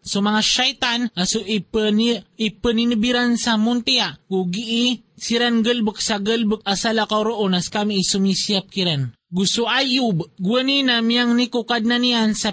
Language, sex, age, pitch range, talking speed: Filipino, male, 20-39, 190-235 Hz, 145 wpm